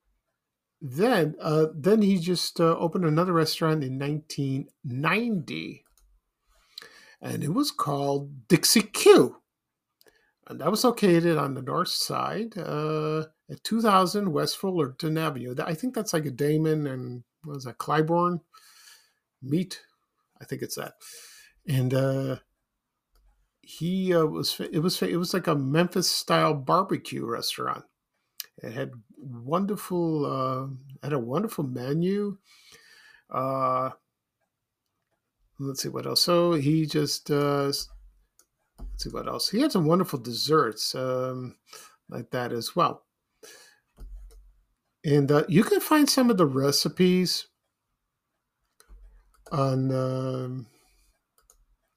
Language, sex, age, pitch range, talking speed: English, male, 50-69, 135-200 Hz, 120 wpm